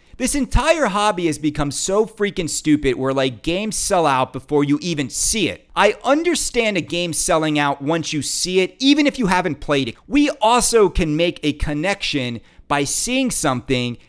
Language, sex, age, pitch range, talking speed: English, male, 40-59, 140-215 Hz, 185 wpm